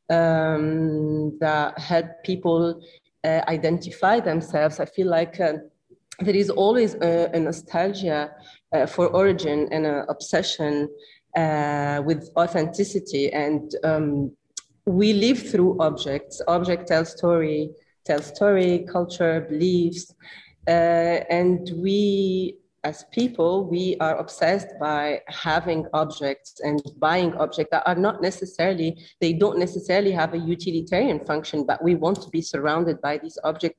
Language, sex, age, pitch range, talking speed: English, female, 30-49, 155-180 Hz, 130 wpm